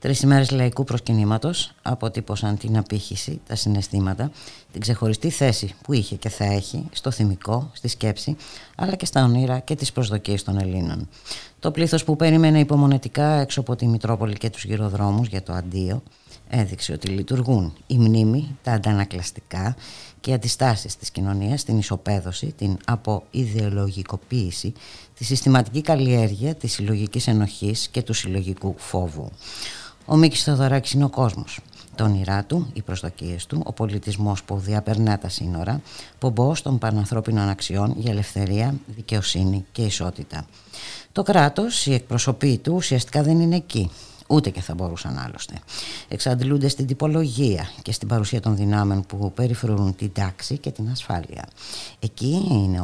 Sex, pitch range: female, 100-130 Hz